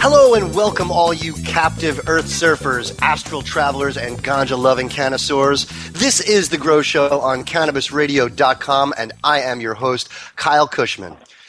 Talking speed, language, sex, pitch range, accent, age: 140 wpm, English, male, 125-170 Hz, American, 30-49